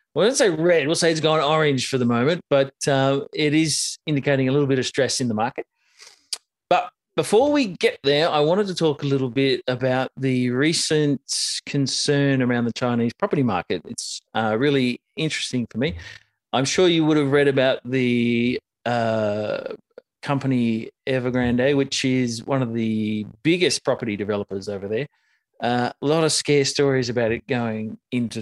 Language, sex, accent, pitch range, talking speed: English, male, Australian, 120-145 Hz, 175 wpm